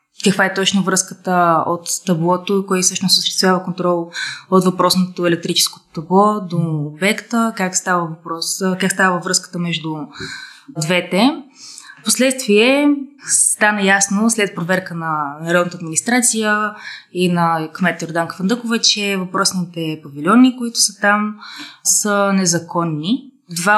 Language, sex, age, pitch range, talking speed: Bulgarian, female, 20-39, 170-220 Hz, 115 wpm